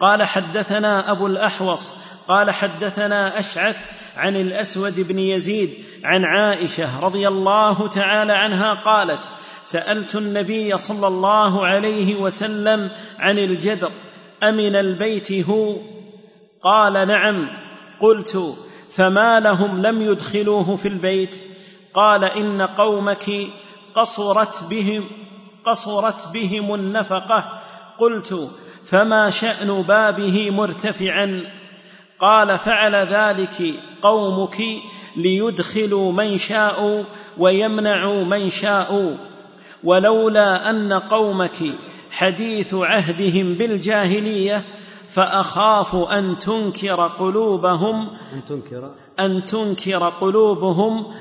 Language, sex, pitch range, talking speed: Arabic, male, 190-210 Hz, 85 wpm